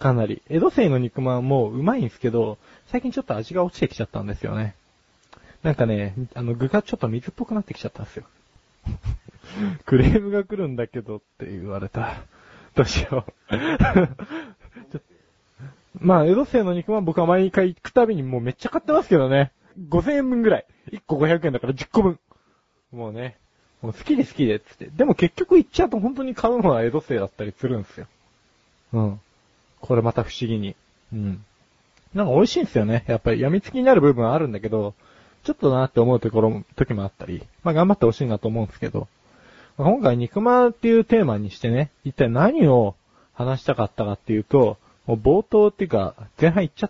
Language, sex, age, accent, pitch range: Japanese, male, 20-39, native, 115-190 Hz